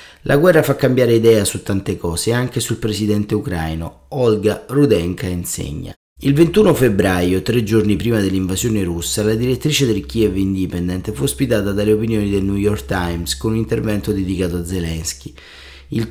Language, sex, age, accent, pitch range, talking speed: Italian, male, 30-49, native, 95-120 Hz, 160 wpm